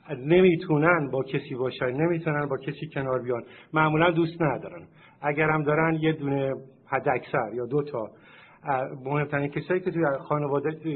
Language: Persian